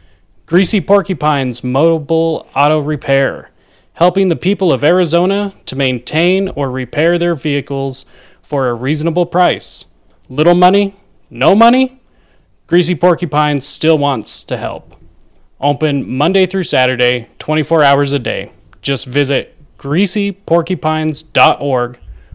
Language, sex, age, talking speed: English, male, 30-49, 110 wpm